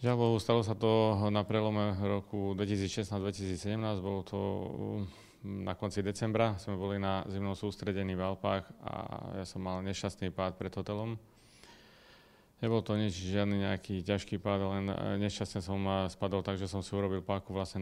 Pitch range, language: 95-105 Hz, Slovak